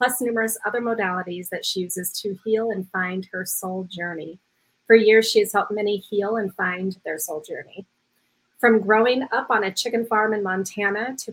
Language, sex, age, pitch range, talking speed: English, female, 30-49, 195-230 Hz, 190 wpm